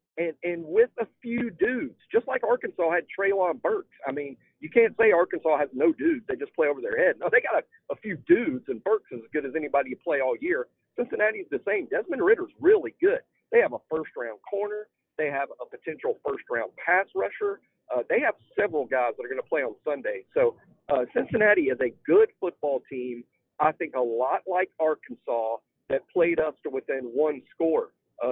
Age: 50-69